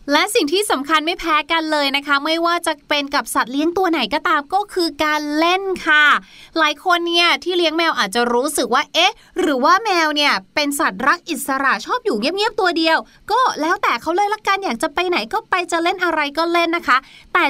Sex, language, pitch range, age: female, Thai, 250-345 Hz, 20-39